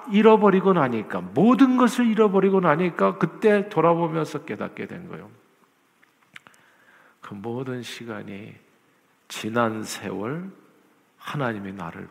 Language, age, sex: Korean, 50-69, male